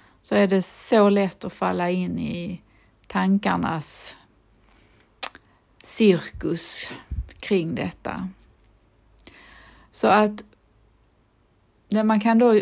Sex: female